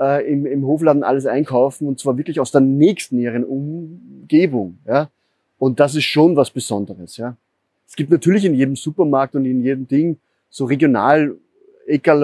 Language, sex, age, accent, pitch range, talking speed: German, male, 30-49, German, 130-160 Hz, 165 wpm